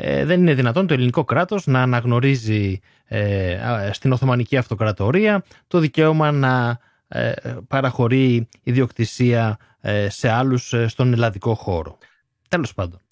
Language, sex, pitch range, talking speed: Greek, male, 110-175 Hz, 105 wpm